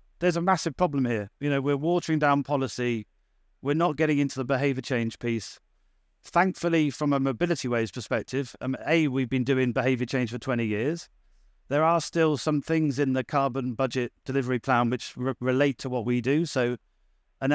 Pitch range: 125-150 Hz